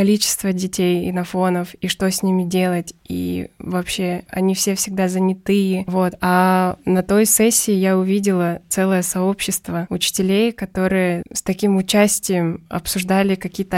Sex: female